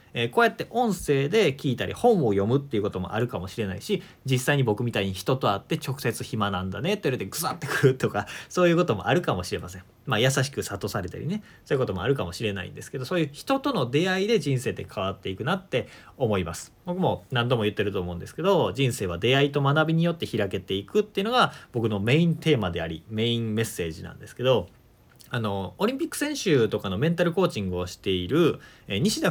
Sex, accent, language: male, native, Japanese